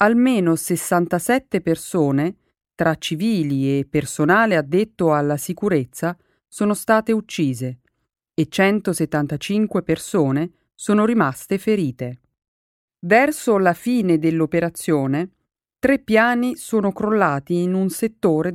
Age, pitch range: 40-59, 150-215 Hz